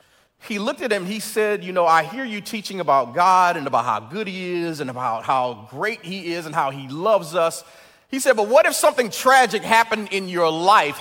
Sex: male